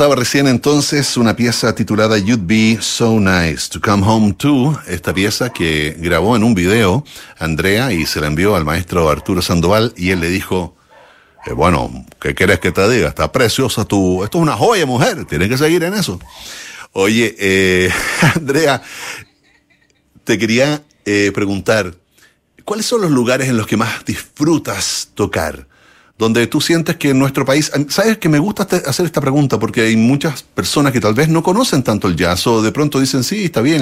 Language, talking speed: Spanish, 185 wpm